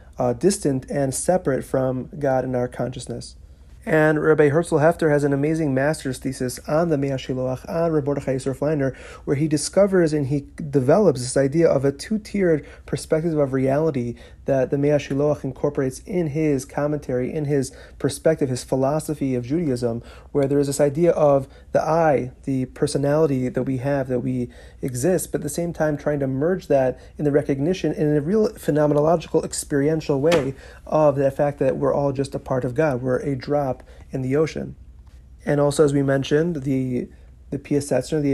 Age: 30-49